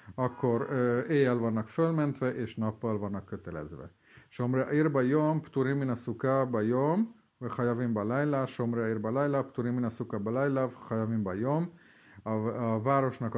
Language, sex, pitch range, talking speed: Hungarian, male, 110-135 Hz, 55 wpm